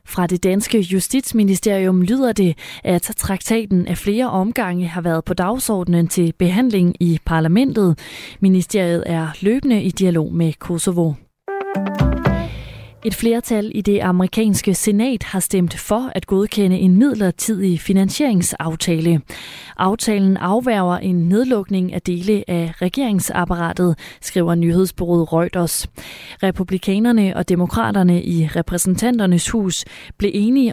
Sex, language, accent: female, Danish, native